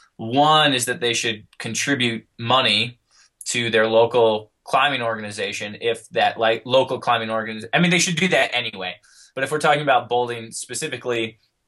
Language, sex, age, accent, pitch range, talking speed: English, male, 20-39, American, 110-125 Hz, 165 wpm